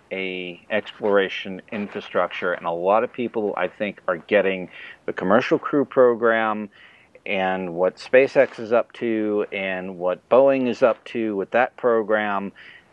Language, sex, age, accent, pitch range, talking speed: English, male, 50-69, American, 100-135 Hz, 145 wpm